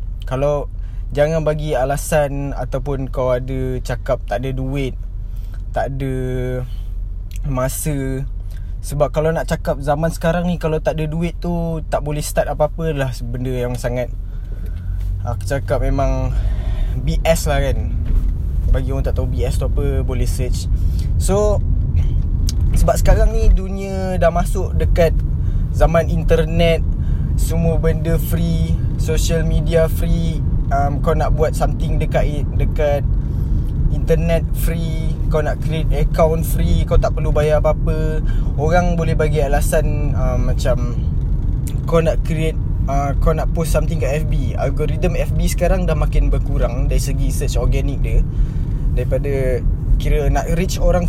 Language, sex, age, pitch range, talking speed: Malay, male, 20-39, 85-140 Hz, 135 wpm